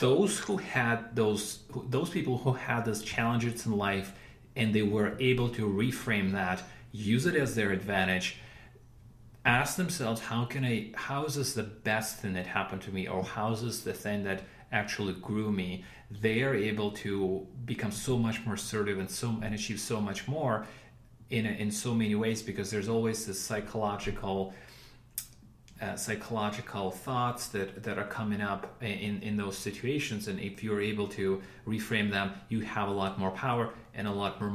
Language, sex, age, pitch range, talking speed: English, male, 30-49, 100-120 Hz, 180 wpm